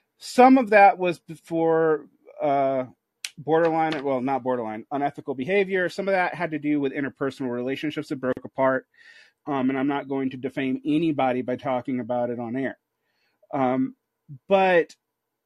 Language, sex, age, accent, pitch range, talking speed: English, male, 40-59, American, 130-170 Hz, 155 wpm